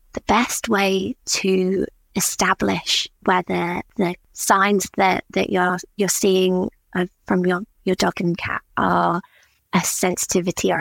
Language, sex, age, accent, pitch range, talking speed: English, female, 20-39, British, 175-200 Hz, 130 wpm